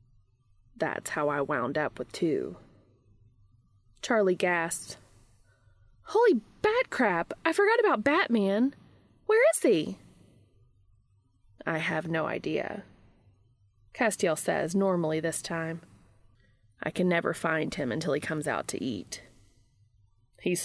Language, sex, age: English, female, 20-39